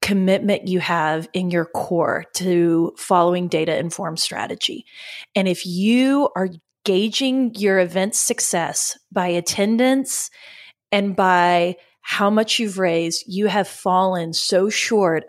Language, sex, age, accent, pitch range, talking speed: English, female, 30-49, American, 175-210 Hz, 125 wpm